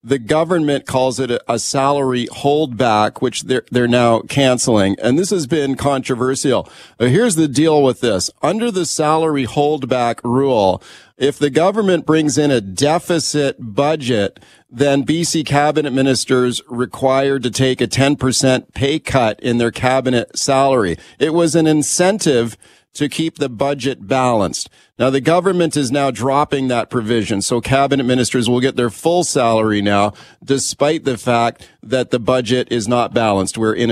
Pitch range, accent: 120-145 Hz, American